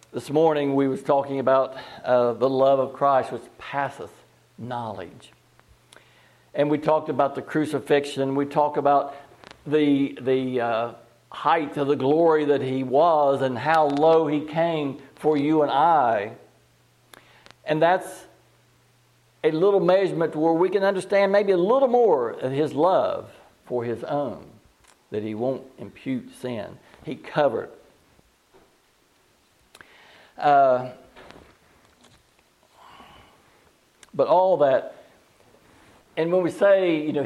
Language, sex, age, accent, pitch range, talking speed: English, male, 60-79, American, 135-200 Hz, 125 wpm